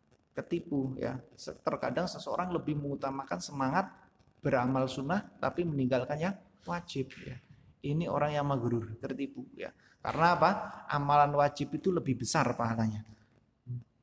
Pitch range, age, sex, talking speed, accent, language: 140-205 Hz, 30-49, male, 120 wpm, native, Indonesian